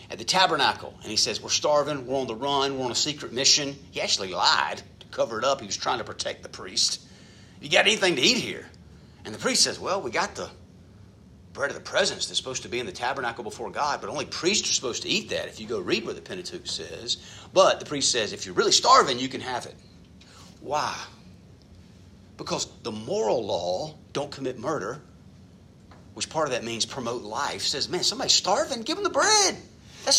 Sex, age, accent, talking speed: male, 40-59, American, 220 wpm